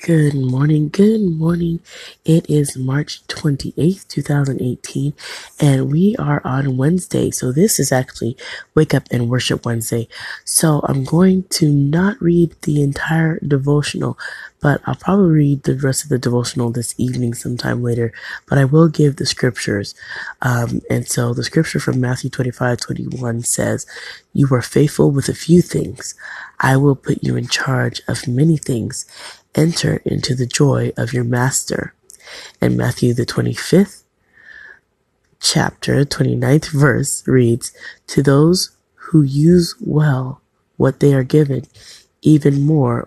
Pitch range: 120-155 Hz